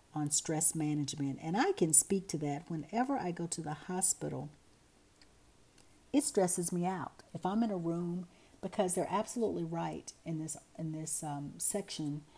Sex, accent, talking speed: female, American, 165 wpm